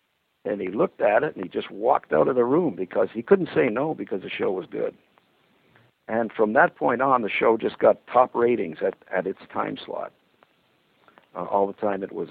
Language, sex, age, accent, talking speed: English, male, 60-79, American, 220 wpm